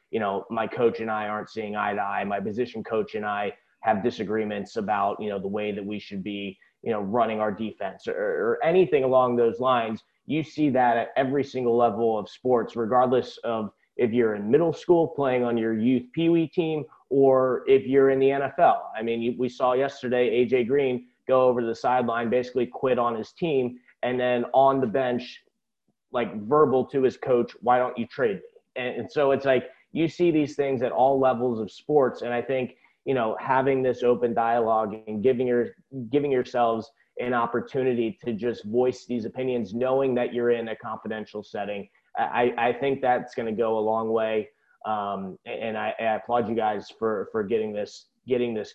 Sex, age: male, 30-49